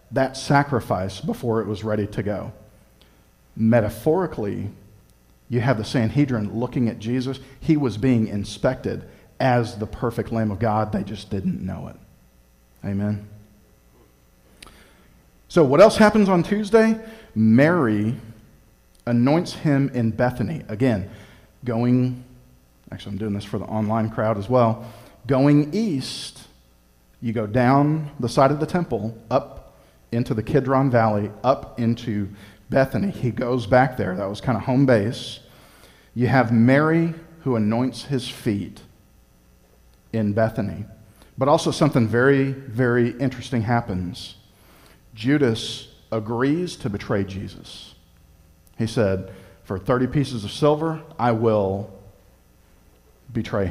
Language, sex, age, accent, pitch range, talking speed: English, male, 40-59, American, 100-130 Hz, 125 wpm